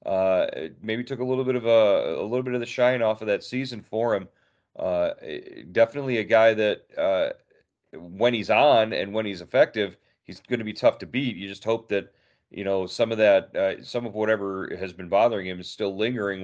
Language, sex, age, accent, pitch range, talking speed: English, male, 30-49, American, 95-115 Hz, 220 wpm